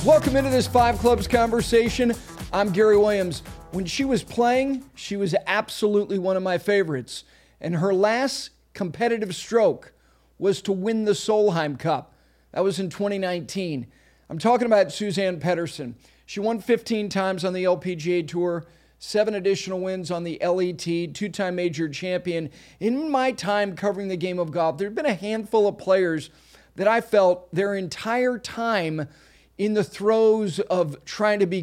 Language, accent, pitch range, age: English, American, 180-225 Hz, 40-59